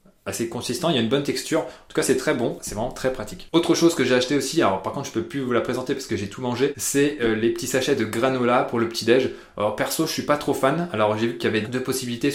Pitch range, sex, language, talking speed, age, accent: 110-135 Hz, male, French, 305 wpm, 20-39, French